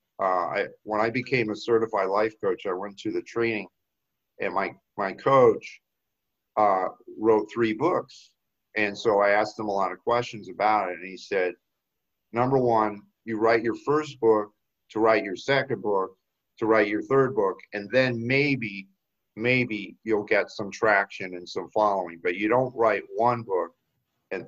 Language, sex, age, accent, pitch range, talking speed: English, male, 50-69, American, 105-145 Hz, 175 wpm